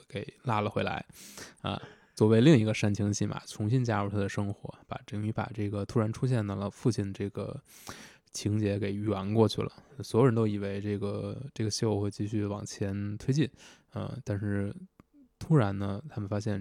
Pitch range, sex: 100-115 Hz, male